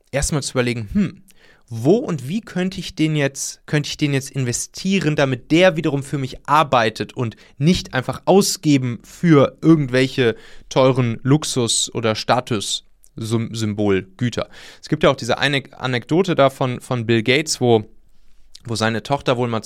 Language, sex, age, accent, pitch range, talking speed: German, male, 30-49, German, 115-155 Hz, 145 wpm